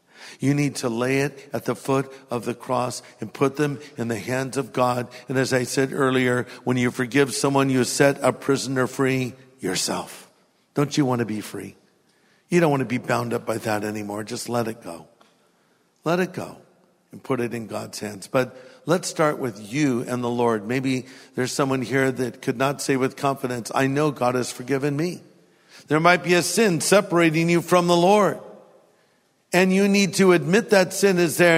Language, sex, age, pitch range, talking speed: English, male, 50-69, 125-170 Hz, 200 wpm